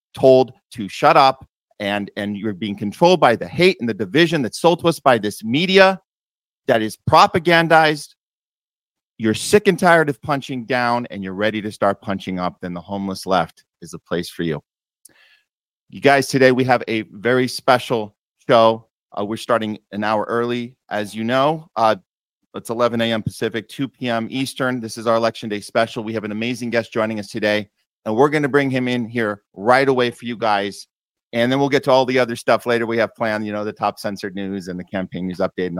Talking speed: 210 wpm